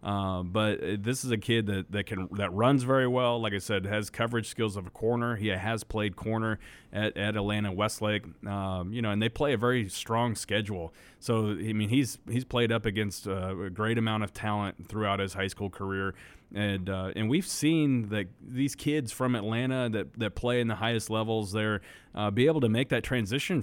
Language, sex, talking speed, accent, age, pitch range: English, male, 210 wpm, American, 30-49, 100-120 Hz